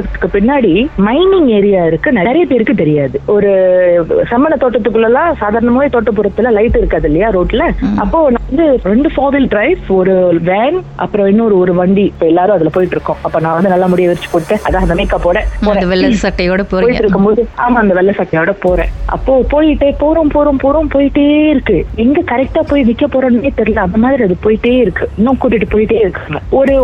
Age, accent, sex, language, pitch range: 20-39, native, female, Tamil, 185-255 Hz